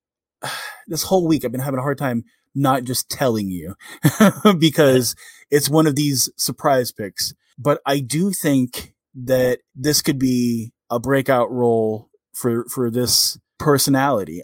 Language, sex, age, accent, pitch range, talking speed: English, male, 20-39, American, 115-140 Hz, 145 wpm